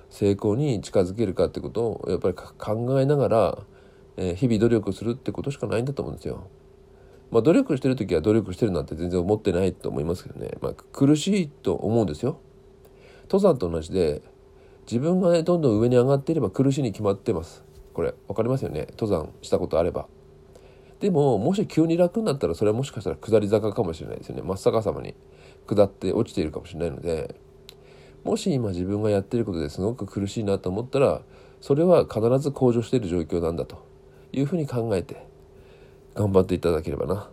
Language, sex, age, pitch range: Japanese, male, 40-59, 90-135 Hz